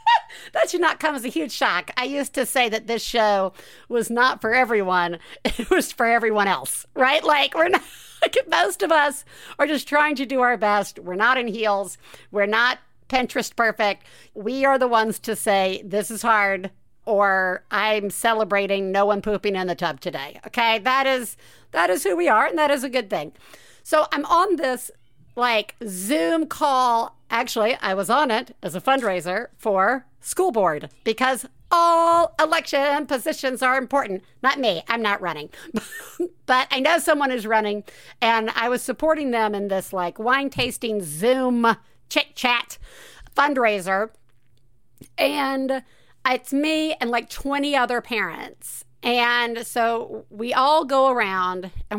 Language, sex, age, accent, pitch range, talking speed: English, female, 50-69, American, 205-275 Hz, 165 wpm